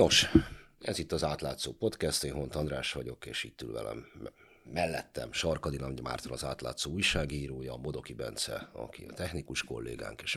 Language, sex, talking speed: Hungarian, male, 155 wpm